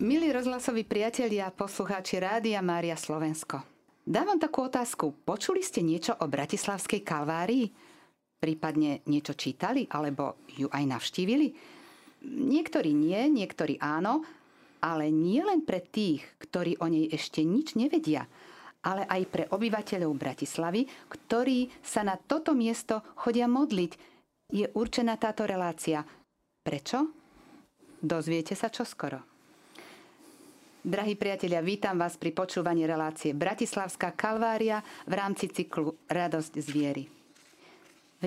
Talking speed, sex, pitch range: 120 wpm, female, 165-260 Hz